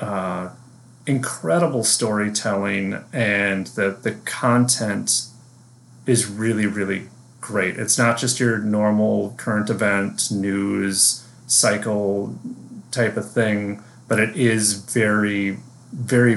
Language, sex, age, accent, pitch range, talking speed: English, male, 30-49, American, 100-125 Hz, 105 wpm